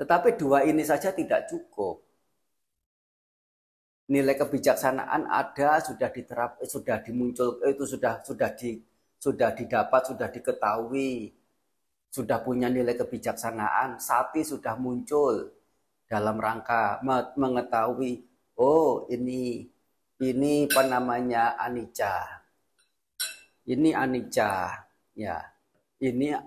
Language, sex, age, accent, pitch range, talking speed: Indonesian, male, 40-59, native, 120-155 Hz, 90 wpm